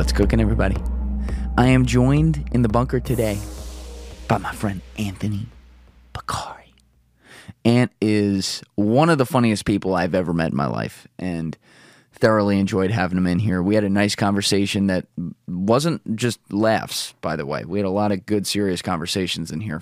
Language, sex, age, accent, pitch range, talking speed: English, male, 20-39, American, 95-115 Hz, 175 wpm